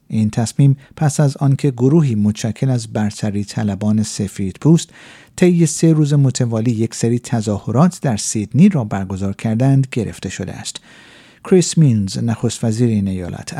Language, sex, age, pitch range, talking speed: Persian, male, 50-69, 110-155 Hz, 140 wpm